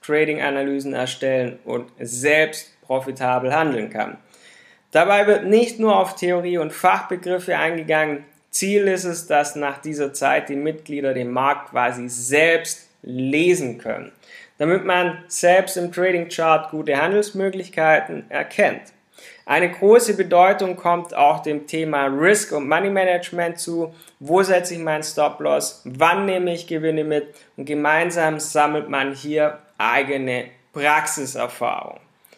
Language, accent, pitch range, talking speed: German, German, 145-185 Hz, 130 wpm